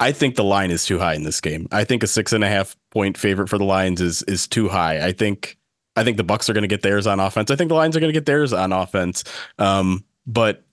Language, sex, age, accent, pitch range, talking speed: English, male, 30-49, American, 100-130 Hz, 290 wpm